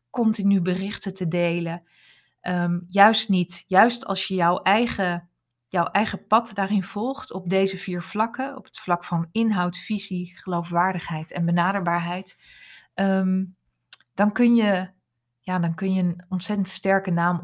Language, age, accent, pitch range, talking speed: Dutch, 20-39, Dutch, 175-200 Hz, 145 wpm